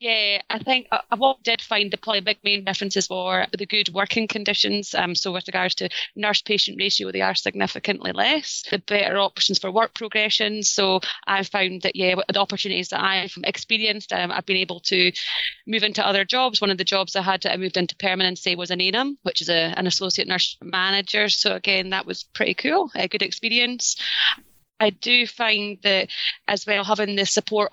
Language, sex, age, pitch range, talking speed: English, female, 20-39, 195-220 Hz, 205 wpm